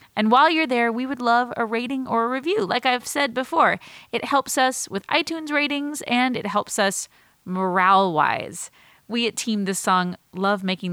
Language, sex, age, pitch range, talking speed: English, female, 30-49, 190-260 Hz, 190 wpm